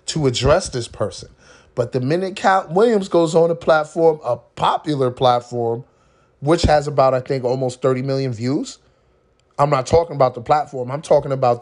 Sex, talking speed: male, 175 wpm